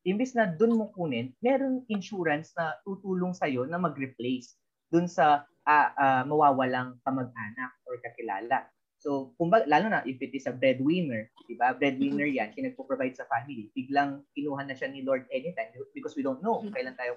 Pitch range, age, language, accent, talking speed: 135-195 Hz, 20-39, Filipino, native, 180 wpm